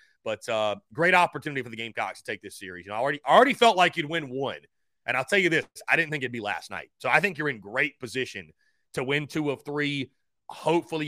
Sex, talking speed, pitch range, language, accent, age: male, 255 wpm, 135-190 Hz, English, American, 30-49